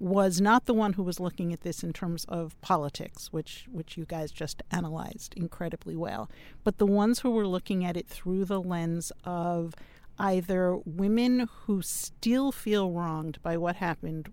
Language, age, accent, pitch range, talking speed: English, 50-69, American, 170-200 Hz, 175 wpm